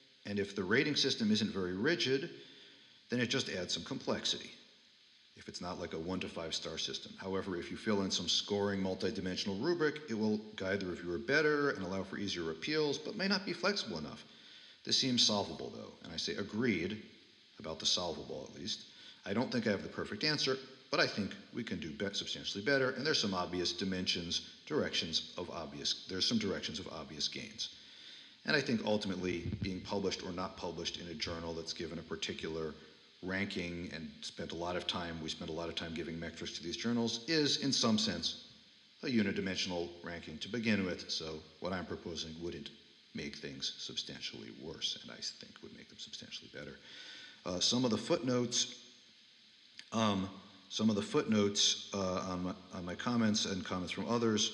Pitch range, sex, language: 85-120 Hz, male, English